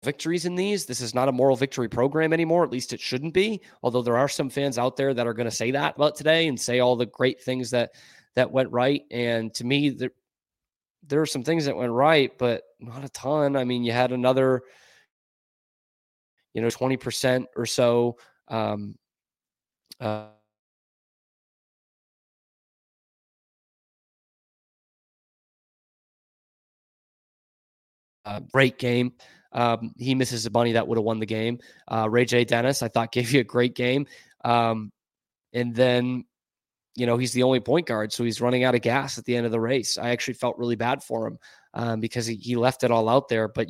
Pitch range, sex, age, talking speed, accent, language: 115-130 Hz, male, 20-39, 180 wpm, American, English